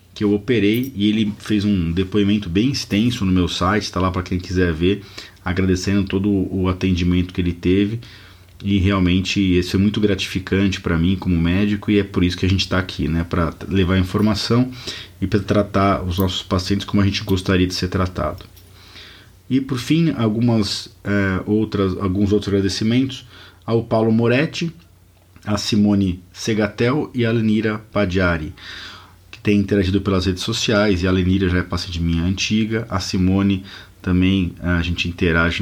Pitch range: 90-105 Hz